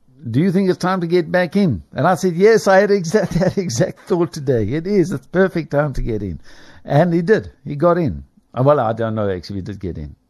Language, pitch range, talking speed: English, 100-135 Hz, 255 wpm